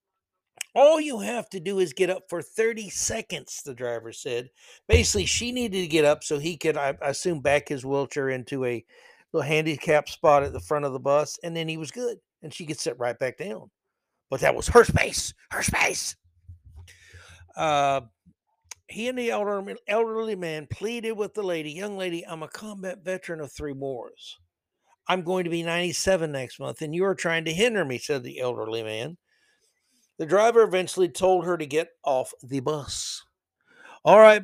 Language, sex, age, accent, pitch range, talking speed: English, male, 60-79, American, 135-185 Hz, 190 wpm